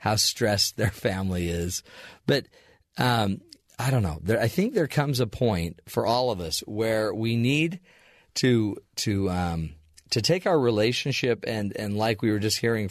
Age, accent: 40-59, American